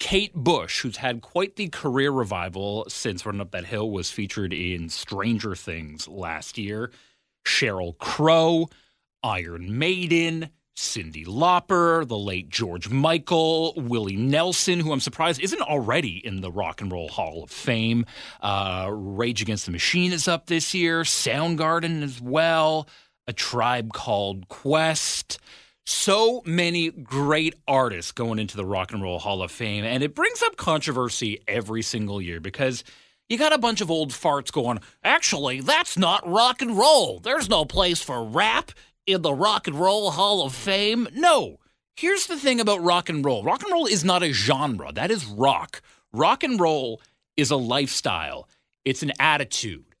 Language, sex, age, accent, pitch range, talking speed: English, male, 30-49, American, 105-170 Hz, 165 wpm